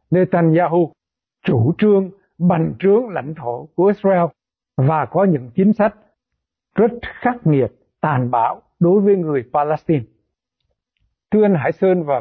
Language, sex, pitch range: Vietnamese, male, 145-190 Hz